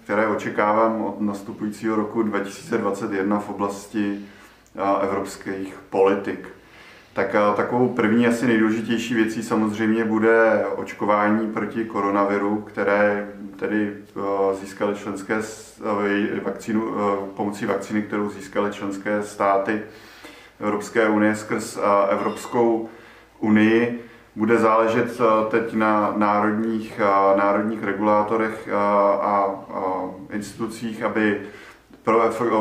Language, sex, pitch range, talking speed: Czech, male, 100-110 Hz, 85 wpm